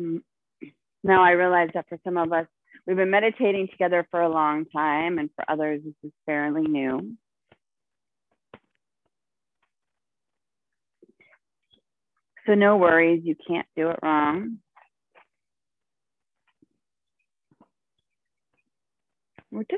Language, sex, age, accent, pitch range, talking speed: English, female, 30-49, American, 155-190 Hz, 95 wpm